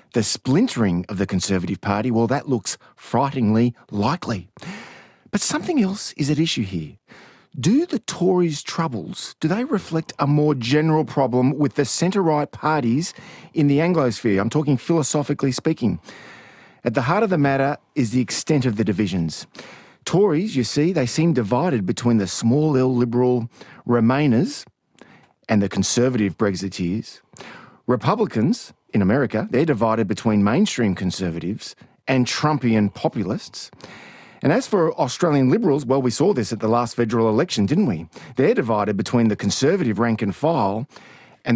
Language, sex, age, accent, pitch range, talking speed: English, male, 40-59, Australian, 115-160 Hz, 145 wpm